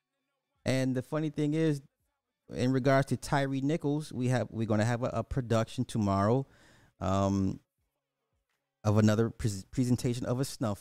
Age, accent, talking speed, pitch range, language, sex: 30-49, American, 155 wpm, 95-130 Hz, English, male